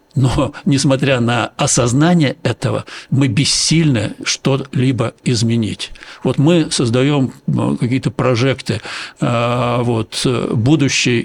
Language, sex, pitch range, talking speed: Russian, male, 120-140 Hz, 80 wpm